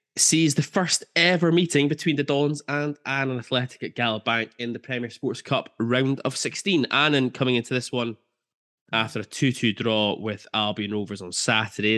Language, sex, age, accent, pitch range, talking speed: English, male, 10-29, British, 105-130 Hz, 180 wpm